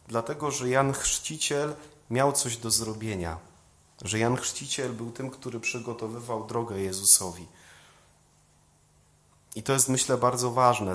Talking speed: 125 wpm